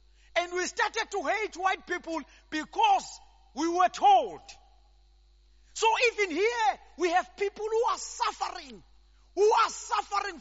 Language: English